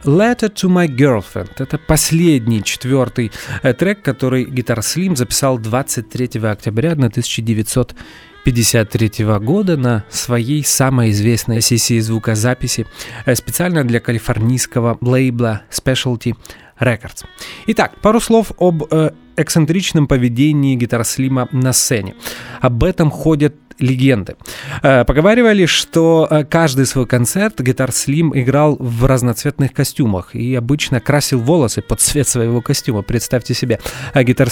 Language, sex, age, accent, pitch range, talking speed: Russian, male, 30-49, native, 120-155 Hz, 115 wpm